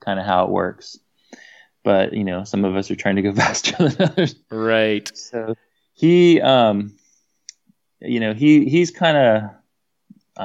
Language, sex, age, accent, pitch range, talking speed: English, male, 20-39, American, 95-110 Hz, 165 wpm